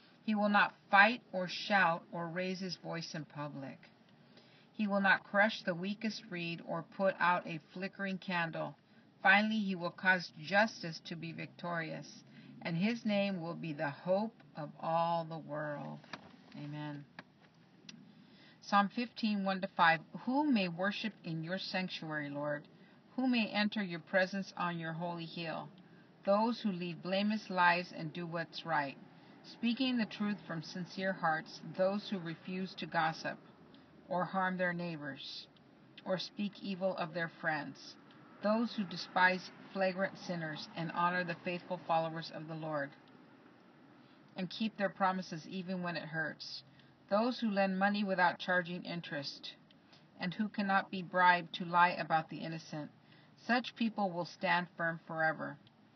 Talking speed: 150 wpm